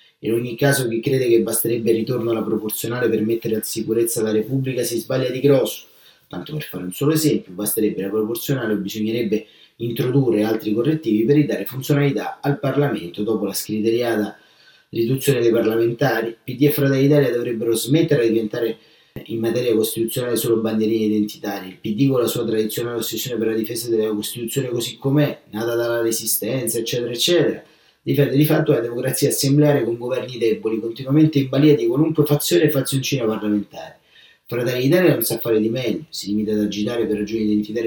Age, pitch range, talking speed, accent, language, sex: 30-49, 110-135 Hz, 175 wpm, native, Italian, male